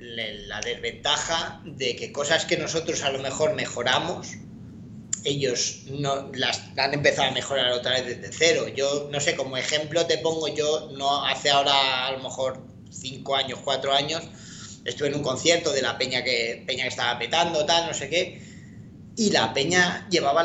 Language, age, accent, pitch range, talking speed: Spanish, 30-49, Spanish, 135-165 Hz, 175 wpm